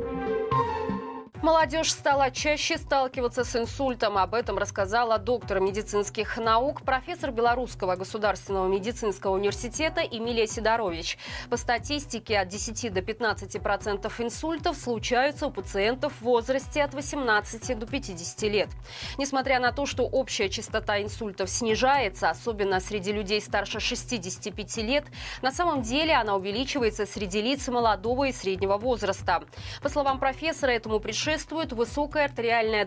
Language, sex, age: Russian, female, 20-39